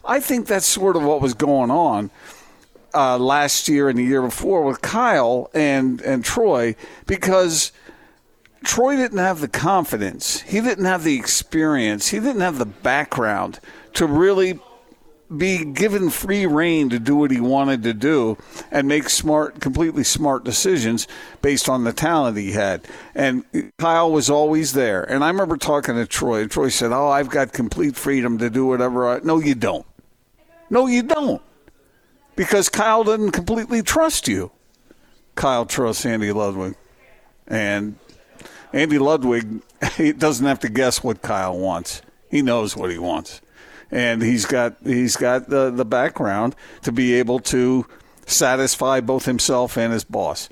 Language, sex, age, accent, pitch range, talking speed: English, male, 50-69, American, 125-185 Hz, 160 wpm